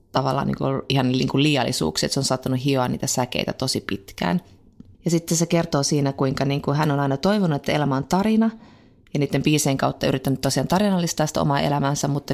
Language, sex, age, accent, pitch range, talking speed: Finnish, female, 30-49, native, 130-155 Hz, 210 wpm